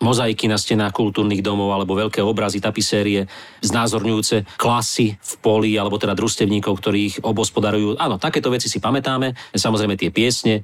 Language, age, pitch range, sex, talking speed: Slovak, 40-59, 100-115 Hz, male, 145 wpm